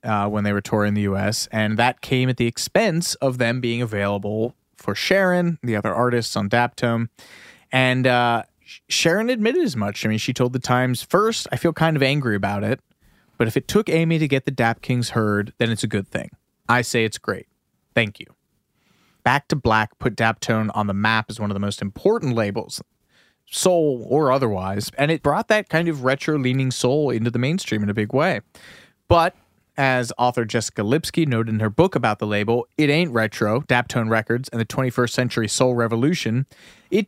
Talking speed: 200 wpm